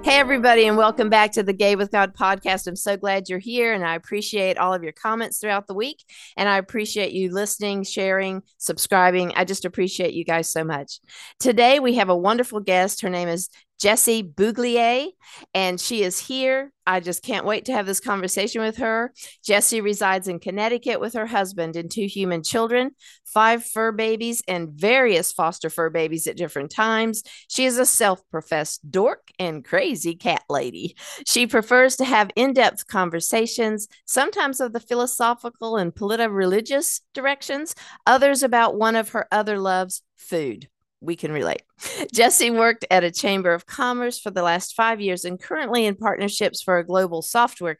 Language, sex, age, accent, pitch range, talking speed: English, female, 50-69, American, 185-235 Hz, 175 wpm